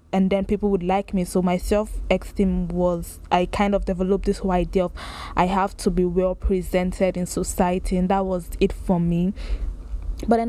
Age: 20-39